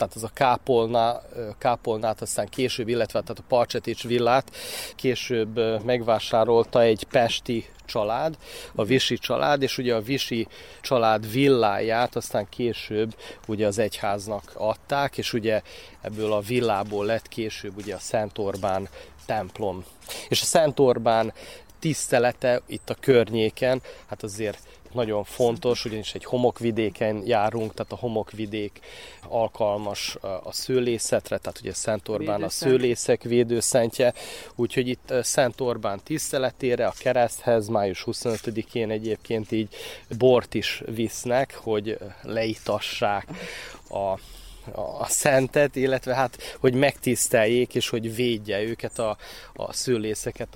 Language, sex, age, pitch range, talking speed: Hungarian, male, 30-49, 110-125 Hz, 120 wpm